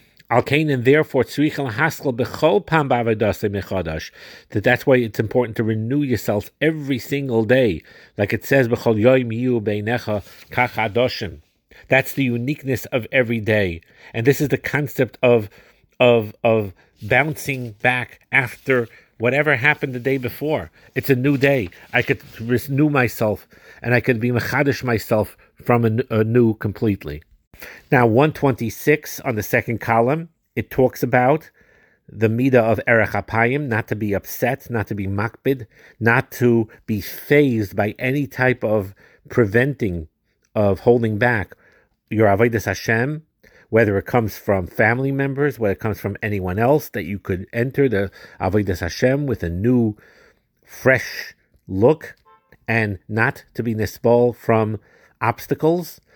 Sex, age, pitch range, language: male, 50-69, 105-130 Hz, English